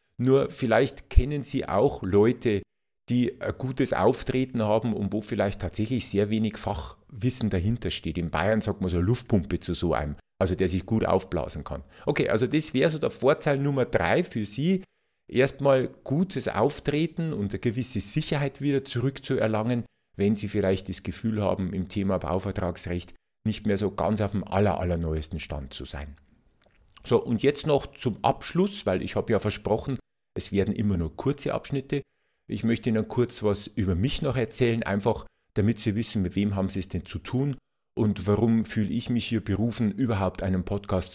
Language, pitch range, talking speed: German, 95-125 Hz, 180 wpm